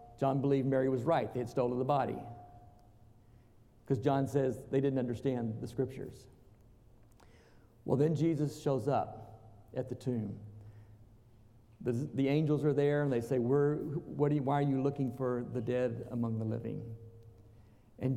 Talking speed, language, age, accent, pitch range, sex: 150 wpm, English, 50-69, American, 115-150 Hz, male